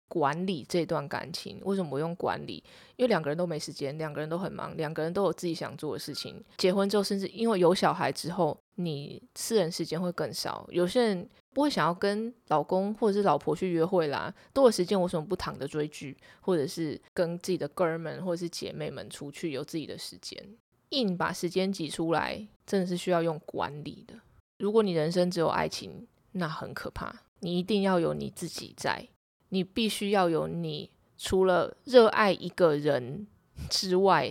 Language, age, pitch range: Chinese, 20-39, 160-200 Hz